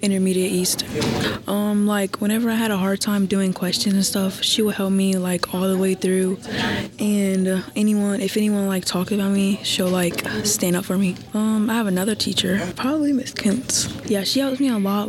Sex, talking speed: female, 205 wpm